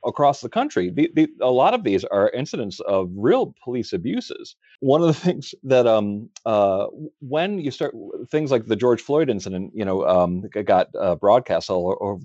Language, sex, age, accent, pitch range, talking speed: English, male, 40-59, American, 105-160 Hz, 195 wpm